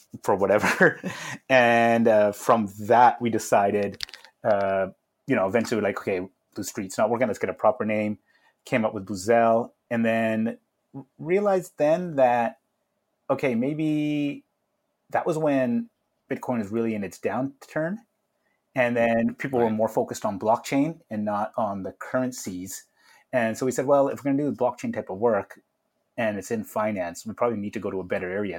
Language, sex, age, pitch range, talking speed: English, male, 30-49, 105-125 Hz, 175 wpm